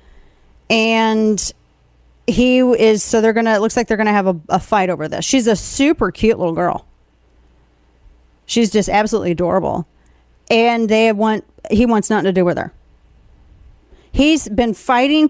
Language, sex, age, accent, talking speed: English, female, 40-59, American, 160 wpm